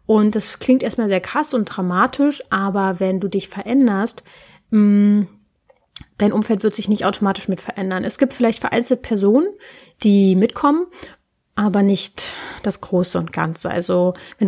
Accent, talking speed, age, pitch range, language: German, 150 wpm, 30-49, 185-225 Hz, German